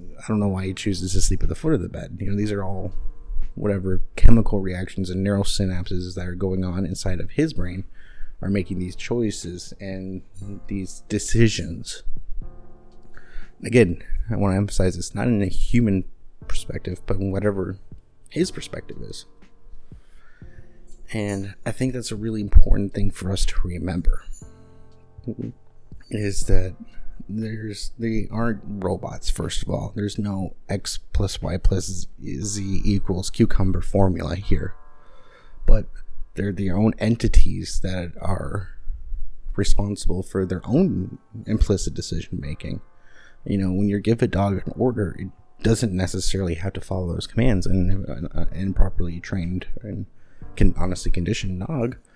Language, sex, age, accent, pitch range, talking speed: English, male, 30-49, American, 90-105 Hz, 150 wpm